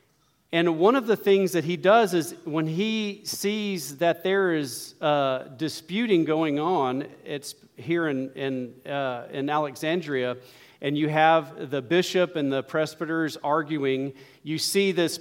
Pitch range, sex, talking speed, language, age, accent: 140-170 Hz, male, 140 wpm, English, 40-59, American